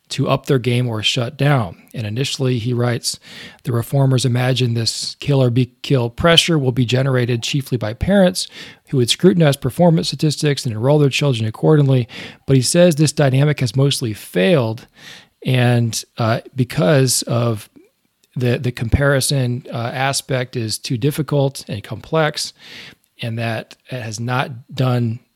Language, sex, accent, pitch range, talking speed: English, male, American, 120-140 Hz, 150 wpm